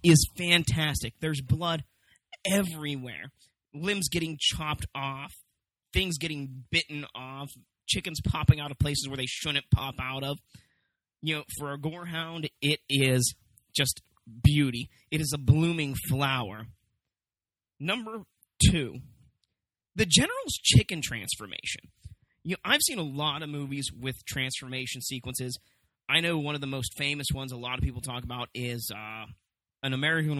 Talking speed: 145 wpm